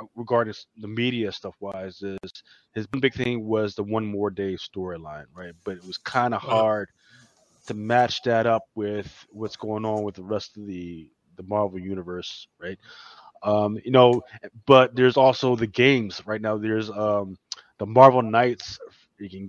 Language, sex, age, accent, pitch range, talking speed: English, male, 20-39, American, 100-120 Hz, 170 wpm